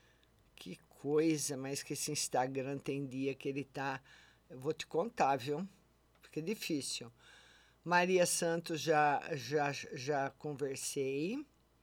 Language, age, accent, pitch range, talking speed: Portuguese, 50-69, Brazilian, 150-210 Hz, 120 wpm